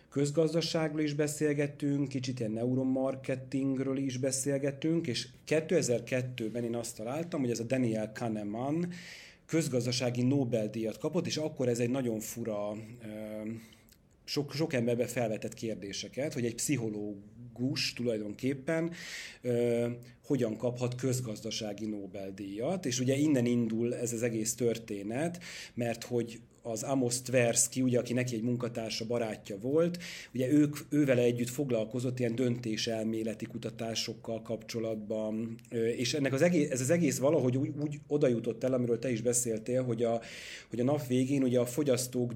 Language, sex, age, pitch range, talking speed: Hungarian, male, 30-49, 115-135 Hz, 135 wpm